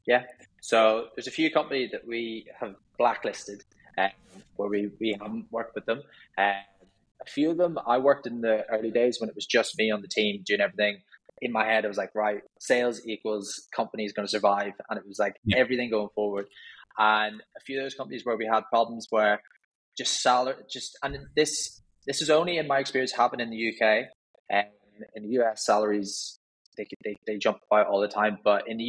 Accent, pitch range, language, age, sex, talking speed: British, 105-125 Hz, English, 20-39, male, 215 wpm